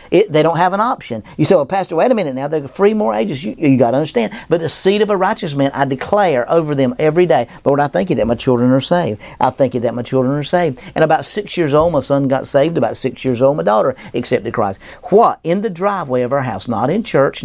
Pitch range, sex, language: 125-165 Hz, male, English